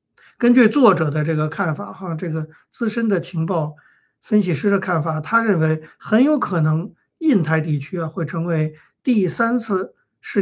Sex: male